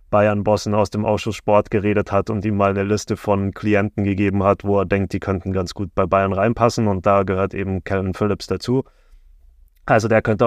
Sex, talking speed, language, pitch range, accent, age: male, 205 wpm, German, 100-120 Hz, German, 20-39